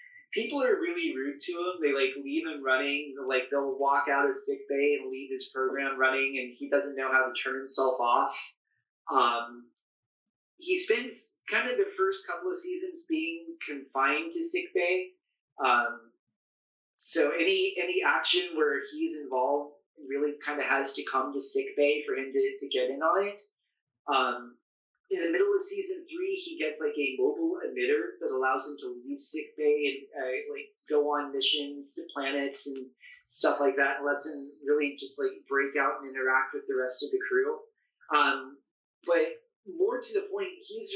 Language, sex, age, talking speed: English, male, 30-49, 185 wpm